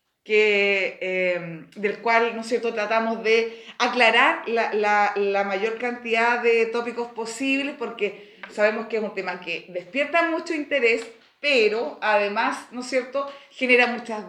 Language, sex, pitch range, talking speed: Spanish, female, 210-265 Hz, 145 wpm